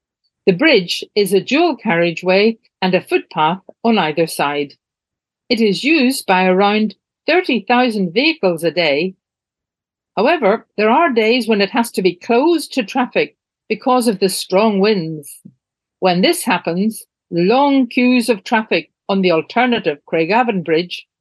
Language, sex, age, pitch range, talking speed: English, female, 50-69, 175-245 Hz, 140 wpm